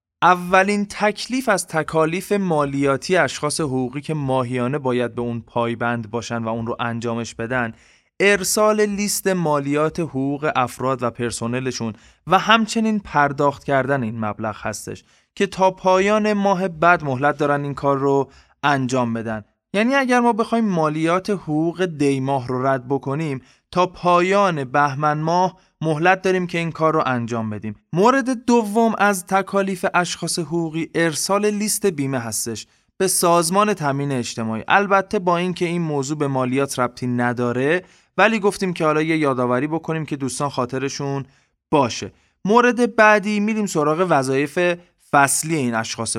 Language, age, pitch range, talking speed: Persian, 20-39, 130-185 Hz, 145 wpm